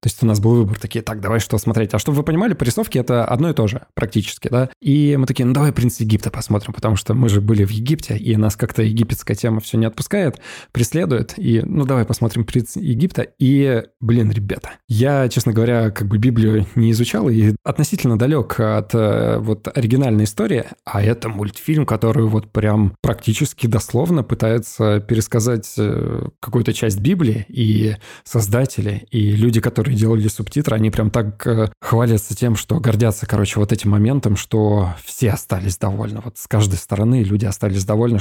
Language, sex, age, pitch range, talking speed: Russian, male, 20-39, 110-125 Hz, 175 wpm